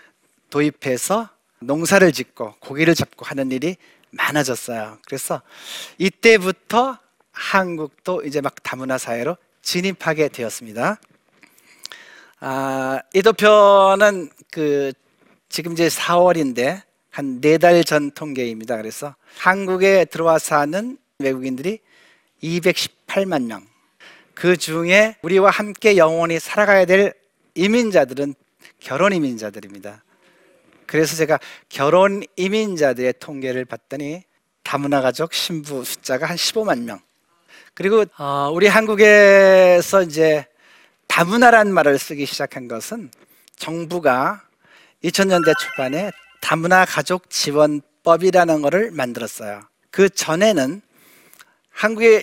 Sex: male